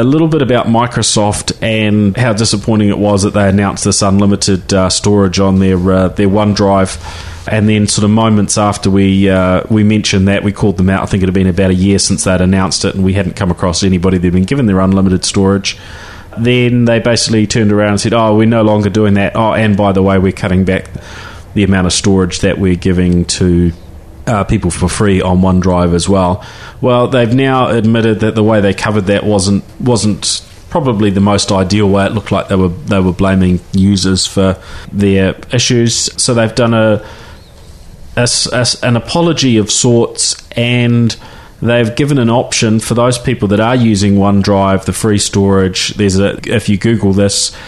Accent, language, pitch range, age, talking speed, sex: Australian, English, 95-110 Hz, 30-49, 200 wpm, male